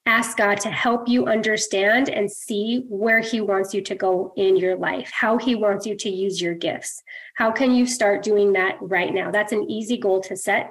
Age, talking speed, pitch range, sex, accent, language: 20-39, 220 wpm, 195-225 Hz, female, American, English